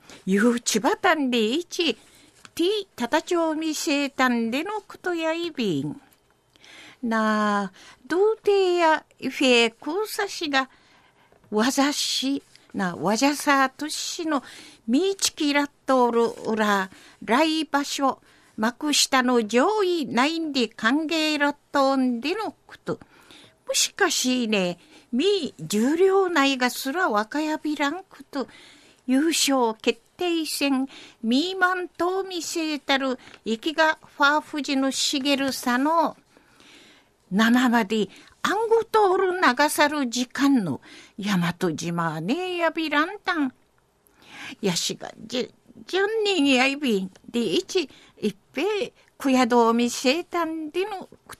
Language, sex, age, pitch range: Japanese, female, 50-69, 240-325 Hz